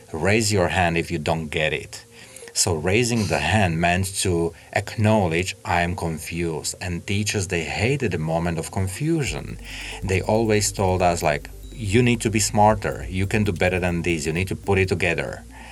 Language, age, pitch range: Slovak, 40-59, 85-100 Hz